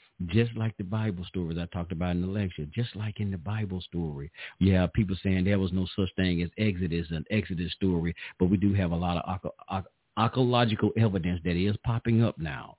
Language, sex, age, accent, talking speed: English, male, 50-69, American, 215 wpm